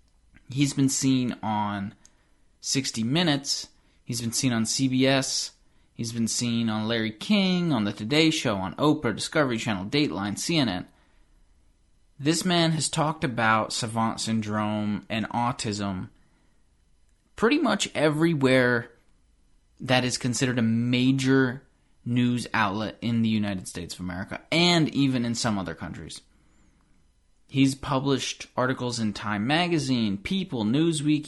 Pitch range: 105-140 Hz